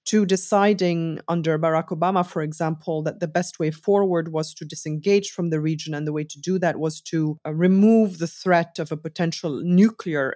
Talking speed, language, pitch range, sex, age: 195 wpm, English, 155-220 Hz, female, 30-49